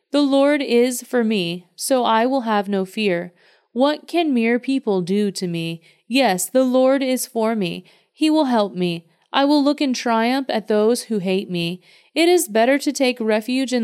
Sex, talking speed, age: female, 195 wpm, 30-49